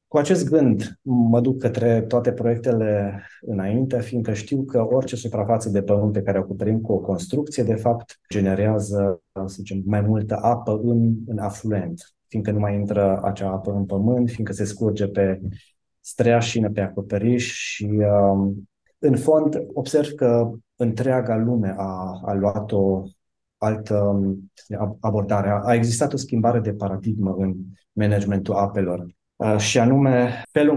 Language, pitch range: Romanian, 100-120 Hz